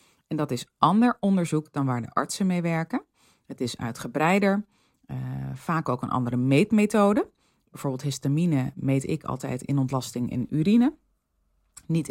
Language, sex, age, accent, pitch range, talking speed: Dutch, female, 30-49, Dutch, 130-180 Hz, 150 wpm